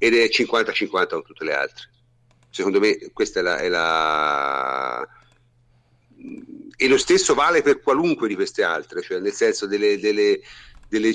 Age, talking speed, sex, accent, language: 50-69, 155 wpm, male, native, Italian